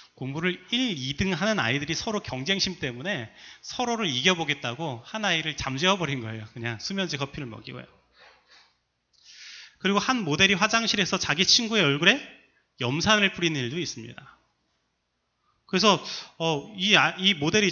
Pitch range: 120-185 Hz